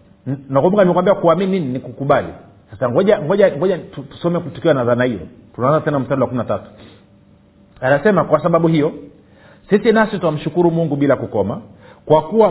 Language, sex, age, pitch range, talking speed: Swahili, male, 50-69, 135-190 Hz, 140 wpm